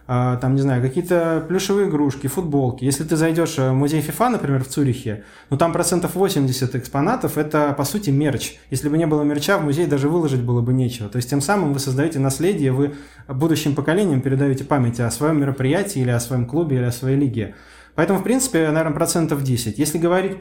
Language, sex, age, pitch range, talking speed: Russian, male, 20-39, 125-155 Hz, 200 wpm